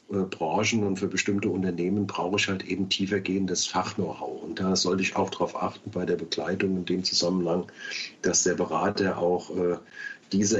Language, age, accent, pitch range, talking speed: German, 40-59, German, 90-100 Hz, 175 wpm